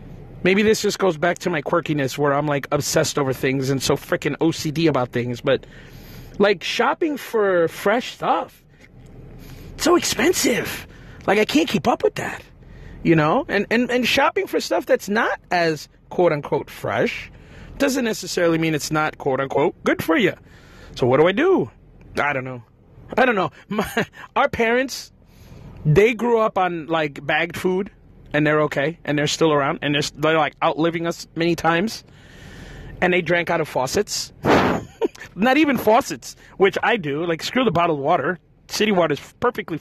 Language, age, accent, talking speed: English, 30-49, American, 175 wpm